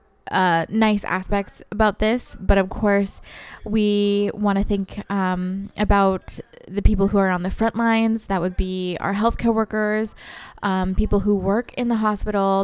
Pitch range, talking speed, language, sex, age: 195-215 Hz, 165 wpm, English, female, 20-39